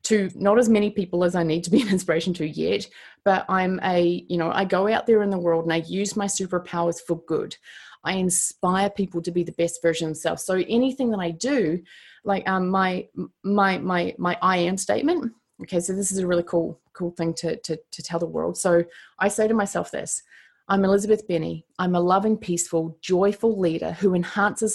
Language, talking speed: English, 215 wpm